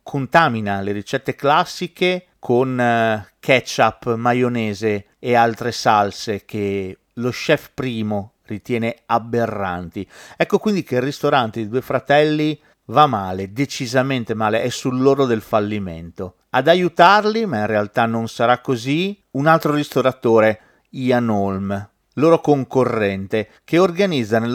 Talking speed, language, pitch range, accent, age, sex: 125 wpm, Italian, 110-150 Hz, native, 40-59, male